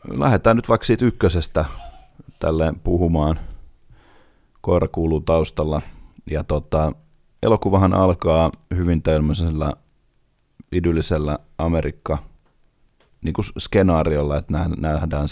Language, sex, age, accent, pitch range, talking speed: Finnish, male, 30-49, native, 75-90 Hz, 80 wpm